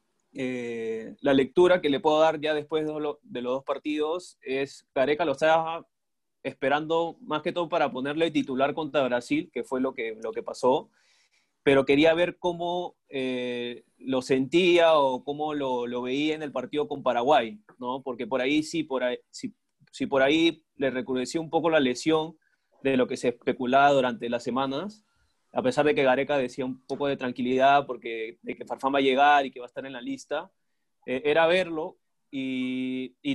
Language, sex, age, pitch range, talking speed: Spanish, male, 30-49, 130-165 Hz, 185 wpm